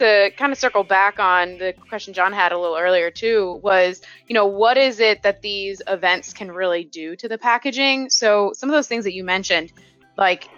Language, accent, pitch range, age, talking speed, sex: English, American, 185-220 Hz, 20-39, 215 wpm, female